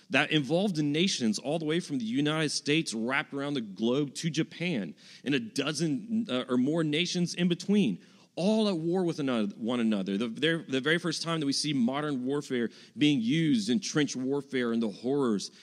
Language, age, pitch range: English, 40-59, 125-170 Hz